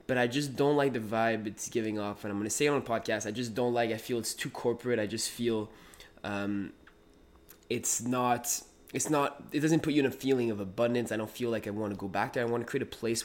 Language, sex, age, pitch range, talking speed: English, male, 20-39, 105-125 Hz, 265 wpm